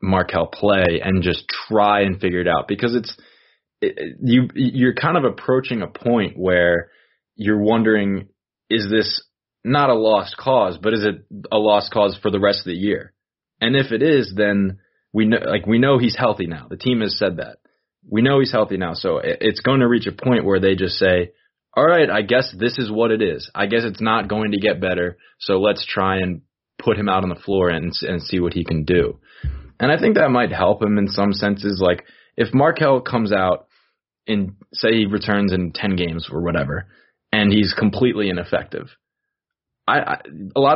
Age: 20-39